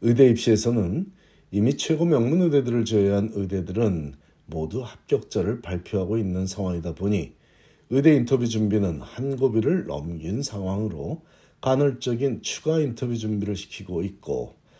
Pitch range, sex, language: 90-135 Hz, male, Korean